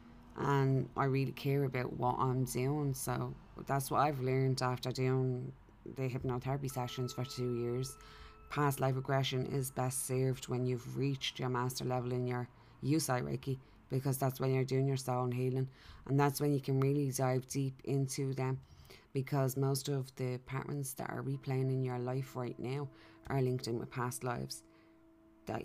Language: English